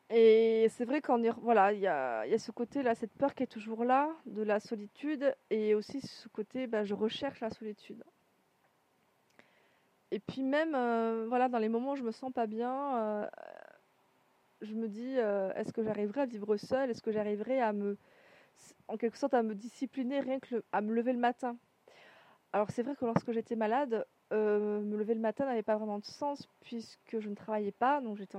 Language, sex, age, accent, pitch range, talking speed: French, female, 30-49, French, 210-255 Hz, 200 wpm